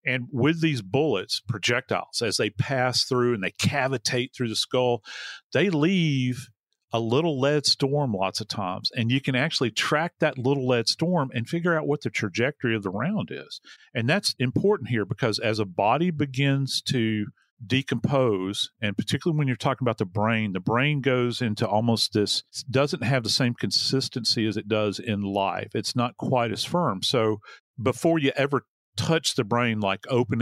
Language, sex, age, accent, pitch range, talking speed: English, male, 40-59, American, 110-140 Hz, 180 wpm